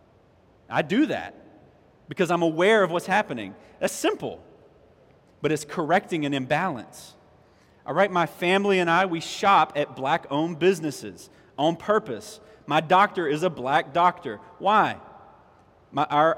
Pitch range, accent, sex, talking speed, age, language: 145-195 Hz, American, male, 135 wpm, 30-49, English